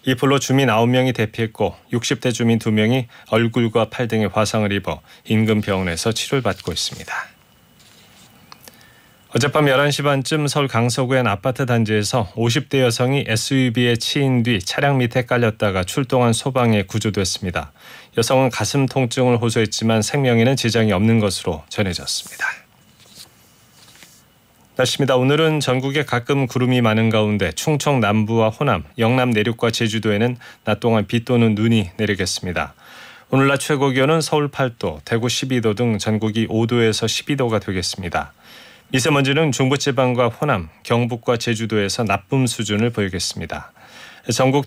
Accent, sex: native, male